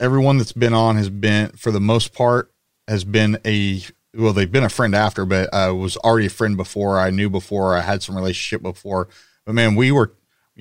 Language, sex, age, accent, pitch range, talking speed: English, male, 30-49, American, 100-115 Hz, 220 wpm